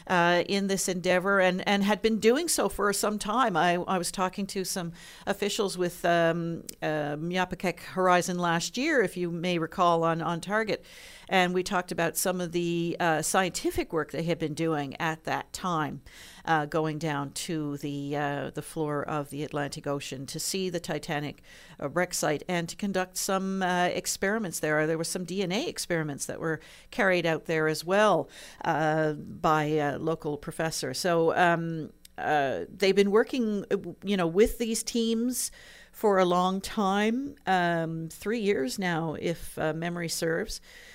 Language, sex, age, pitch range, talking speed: English, female, 50-69, 160-200 Hz, 170 wpm